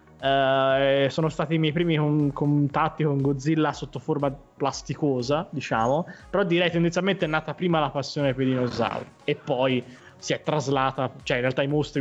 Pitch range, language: 120-145 Hz, Italian